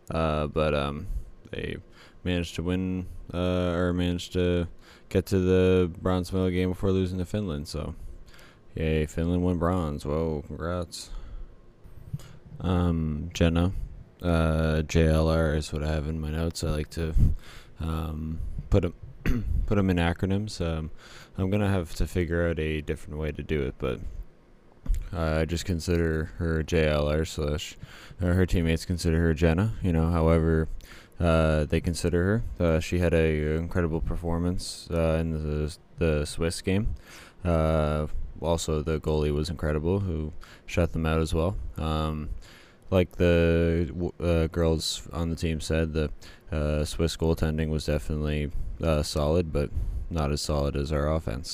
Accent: American